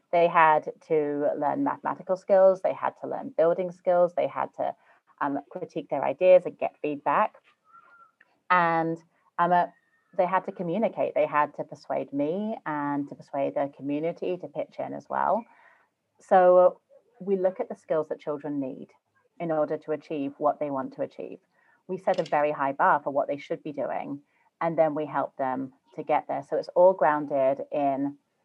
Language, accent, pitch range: English, British, 150-180 Hz